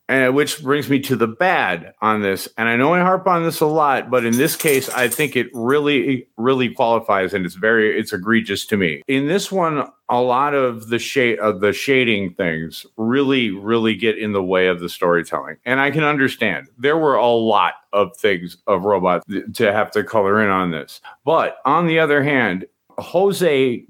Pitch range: 110-150 Hz